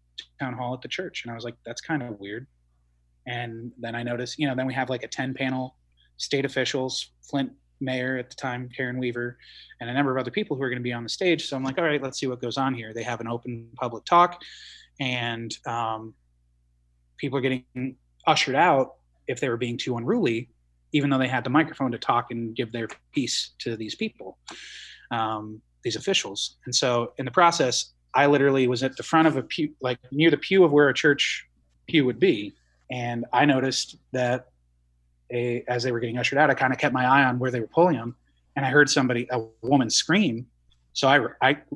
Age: 20-39